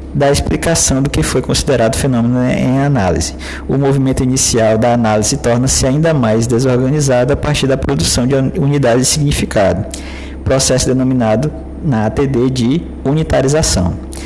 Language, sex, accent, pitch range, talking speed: Portuguese, male, Brazilian, 110-140 Hz, 135 wpm